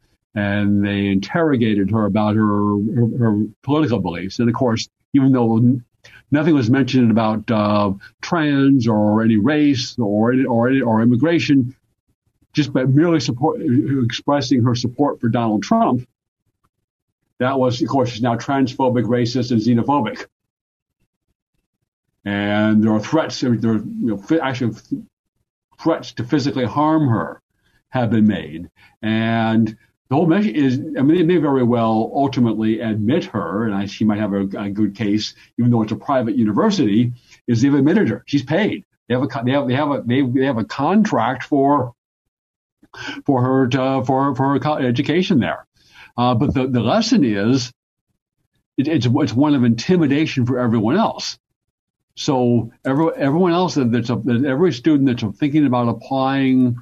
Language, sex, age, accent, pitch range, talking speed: English, male, 60-79, American, 110-140 Hz, 155 wpm